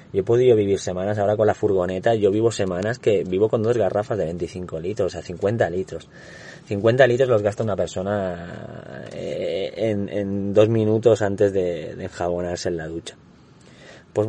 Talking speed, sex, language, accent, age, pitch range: 175 wpm, male, Spanish, Spanish, 30-49, 100-125 Hz